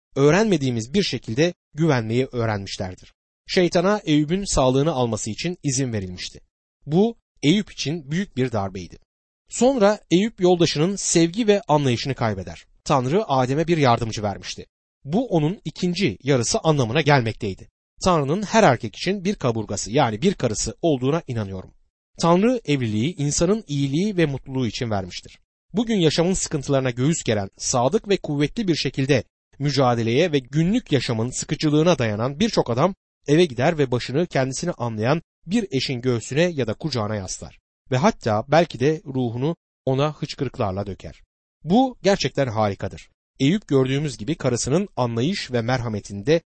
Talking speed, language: 135 wpm, Turkish